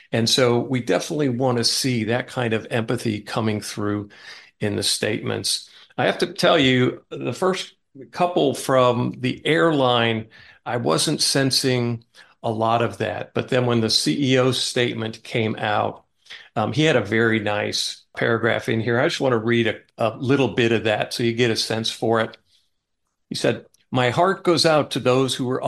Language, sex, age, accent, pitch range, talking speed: English, male, 50-69, American, 115-130 Hz, 185 wpm